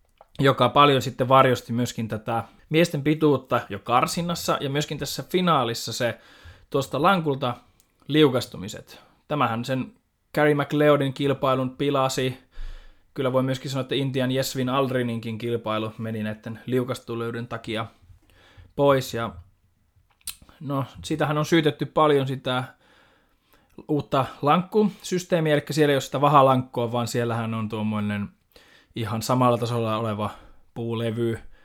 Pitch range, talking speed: 115-145 Hz, 120 wpm